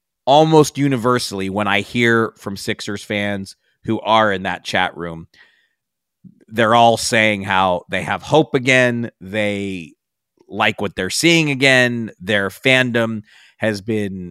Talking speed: 135 wpm